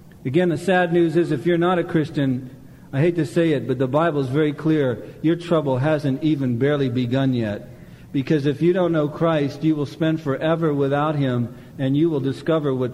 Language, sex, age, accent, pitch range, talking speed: English, male, 50-69, American, 135-175 Hz, 210 wpm